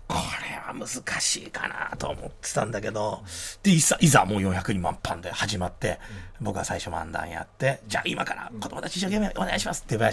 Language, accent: Japanese, native